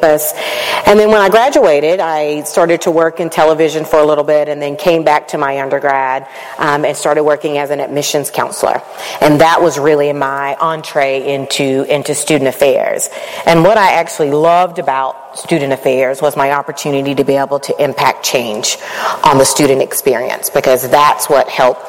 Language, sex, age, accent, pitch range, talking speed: English, female, 40-59, American, 140-160 Hz, 180 wpm